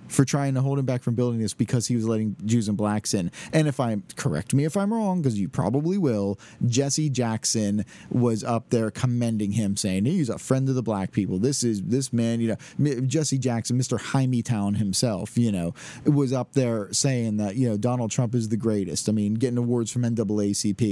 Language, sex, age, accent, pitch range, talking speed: English, male, 30-49, American, 110-140 Hz, 215 wpm